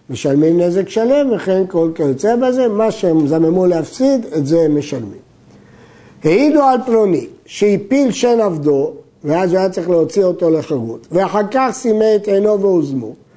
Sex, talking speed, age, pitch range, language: male, 155 wpm, 50-69, 165-225 Hz, Hebrew